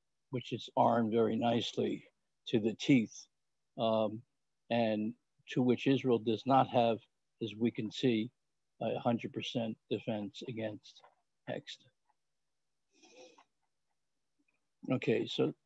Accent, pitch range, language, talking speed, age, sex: American, 115-130 Hz, English, 105 wpm, 60-79, male